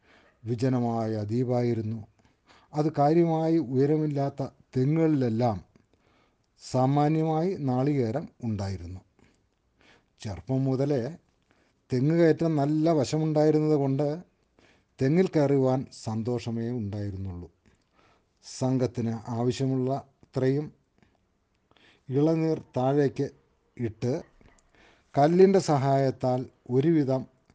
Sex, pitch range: male, 115-155 Hz